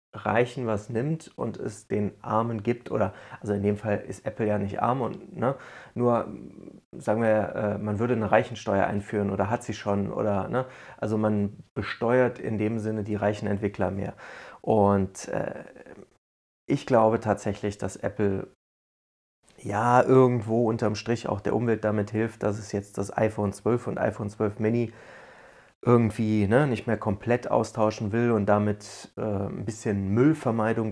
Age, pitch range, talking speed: 30-49, 105-115 Hz, 155 wpm